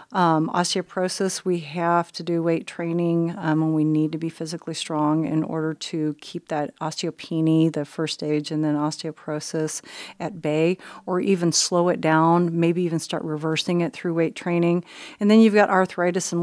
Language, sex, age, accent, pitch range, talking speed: English, female, 40-59, American, 155-175 Hz, 180 wpm